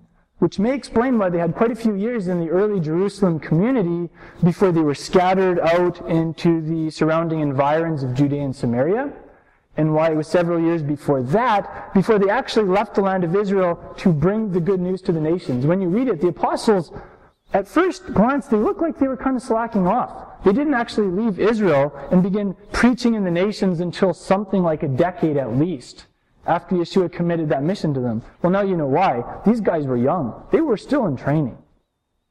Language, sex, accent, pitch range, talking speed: English, male, American, 155-205 Hz, 200 wpm